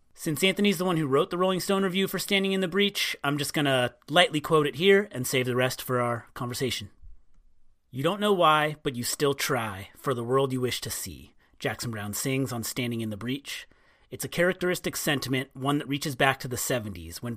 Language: English